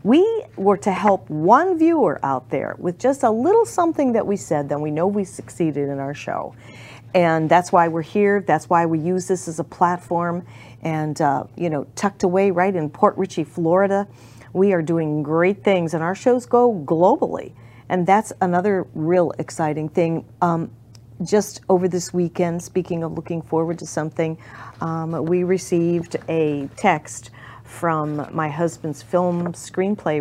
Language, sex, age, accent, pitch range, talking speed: English, female, 40-59, American, 140-180 Hz, 170 wpm